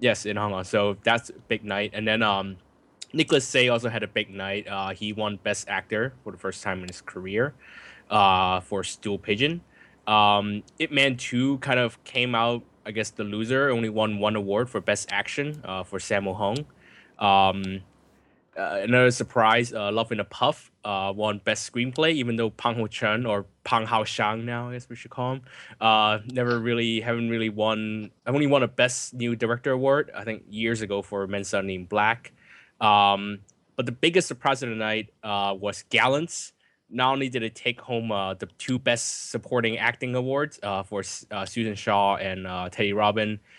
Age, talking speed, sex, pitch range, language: 20-39, 195 wpm, male, 100-120 Hz, English